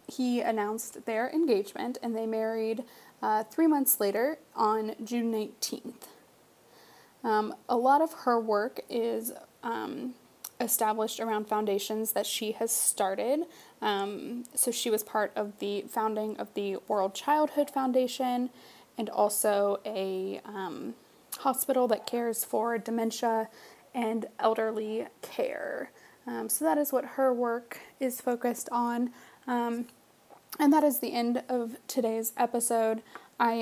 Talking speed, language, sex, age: 130 wpm, English, female, 20-39